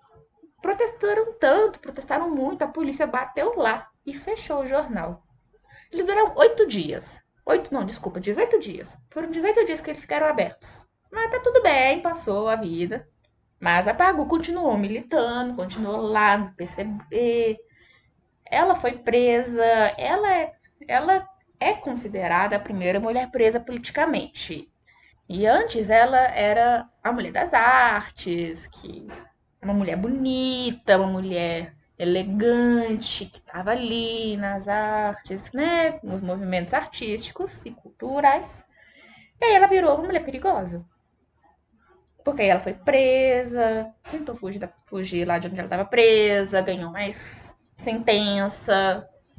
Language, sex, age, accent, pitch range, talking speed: Portuguese, female, 10-29, Brazilian, 200-320 Hz, 130 wpm